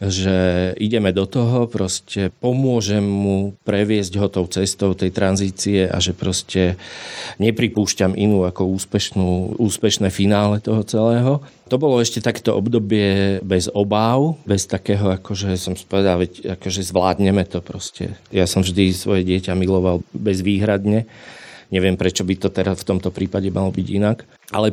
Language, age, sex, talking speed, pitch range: Slovak, 40-59, male, 145 wpm, 95-115 Hz